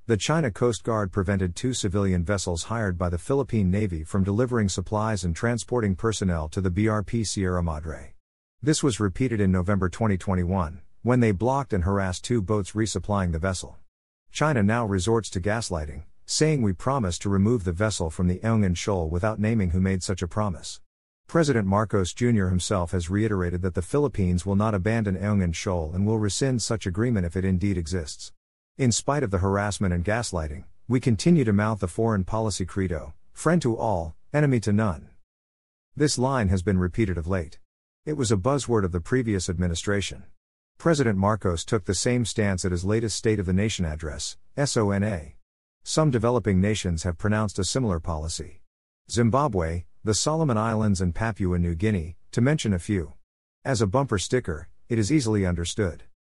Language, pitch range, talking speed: English, 90-115 Hz, 175 wpm